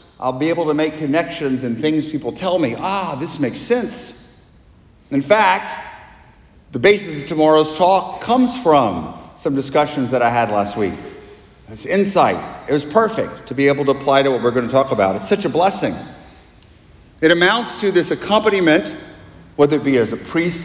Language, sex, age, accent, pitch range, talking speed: English, male, 50-69, American, 140-185 Hz, 185 wpm